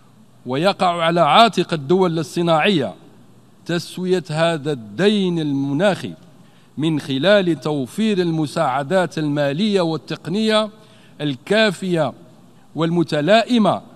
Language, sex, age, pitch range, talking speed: Arabic, male, 50-69, 160-205 Hz, 75 wpm